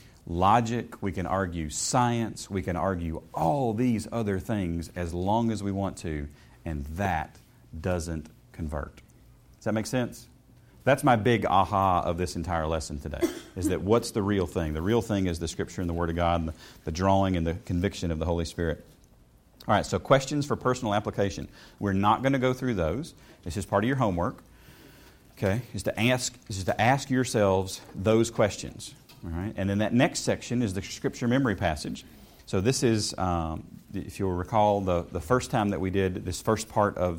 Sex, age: male, 40-59